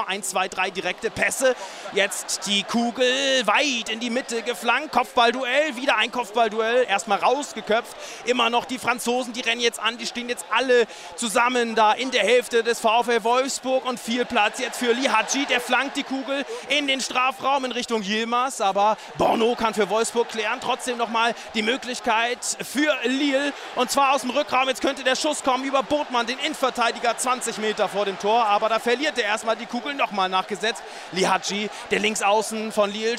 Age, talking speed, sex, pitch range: 30-49, 185 wpm, male, 220-255 Hz